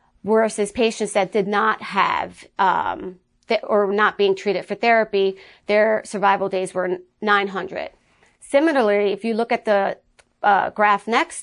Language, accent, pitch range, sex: English, American, 200-230 Hz, female